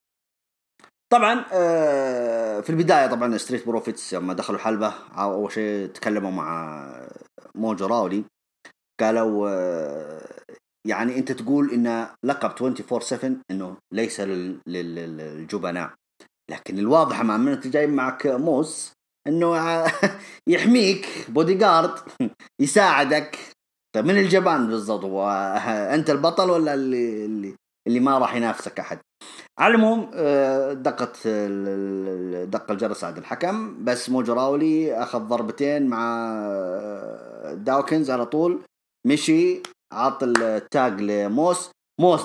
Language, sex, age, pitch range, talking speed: English, male, 30-49, 105-165 Hz, 100 wpm